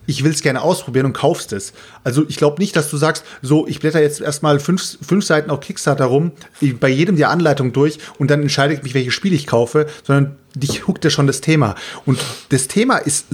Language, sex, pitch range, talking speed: German, male, 140-180 Hz, 230 wpm